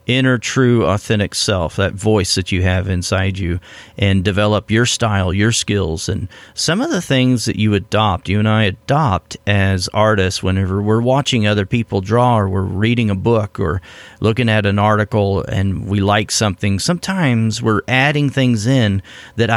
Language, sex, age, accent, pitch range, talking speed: English, male, 40-59, American, 95-120 Hz, 175 wpm